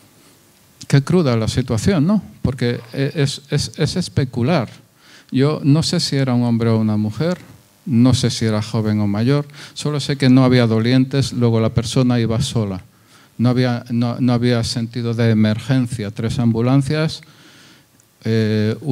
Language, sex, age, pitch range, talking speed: Spanish, male, 50-69, 115-140 Hz, 145 wpm